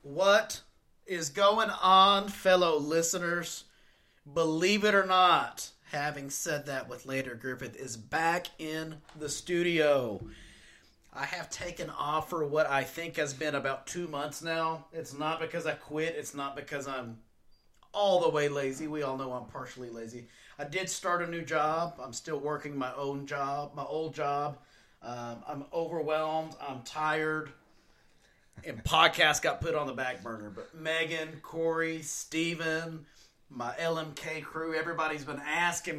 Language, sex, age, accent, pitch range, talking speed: English, male, 30-49, American, 140-165 Hz, 155 wpm